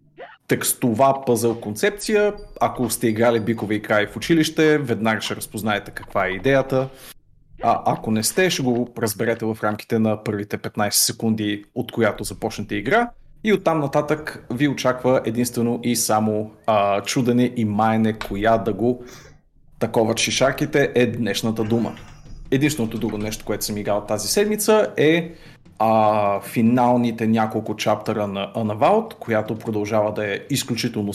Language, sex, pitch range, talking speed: Bulgarian, male, 105-135 Hz, 140 wpm